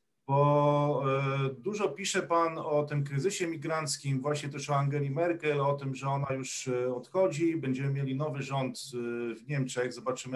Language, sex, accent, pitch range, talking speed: Polish, male, native, 135-185 Hz, 150 wpm